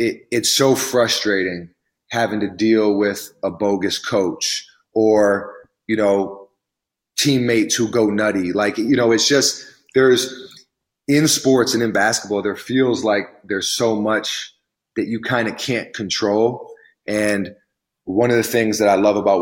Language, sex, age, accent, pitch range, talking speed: English, male, 30-49, American, 100-115 Hz, 150 wpm